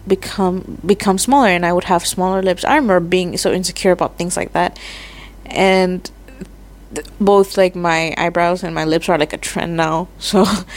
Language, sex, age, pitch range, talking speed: English, female, 20-39, 175-215 Hz, 180 wpm